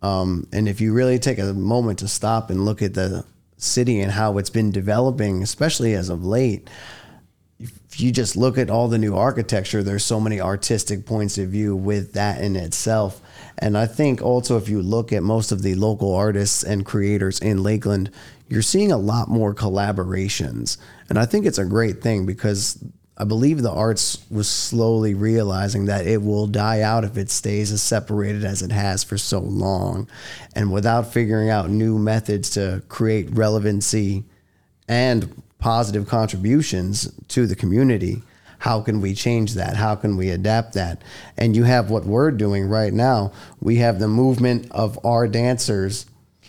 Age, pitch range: 20-39, 100-115 Hz